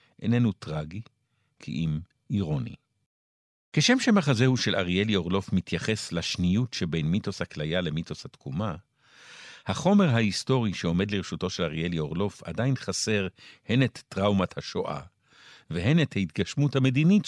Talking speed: 120 wpm